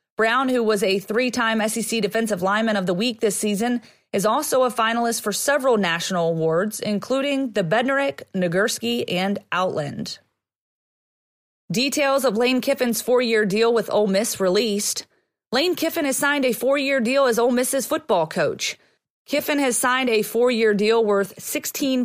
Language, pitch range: English, 205-255 Hz